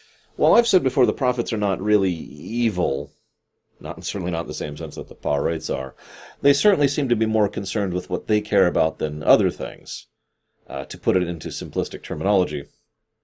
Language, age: English, 30-49